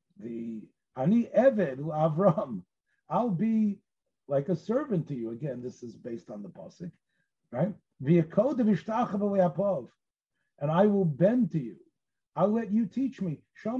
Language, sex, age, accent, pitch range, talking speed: English, male, 50-69, American, 165-215 Hz, 135 wpm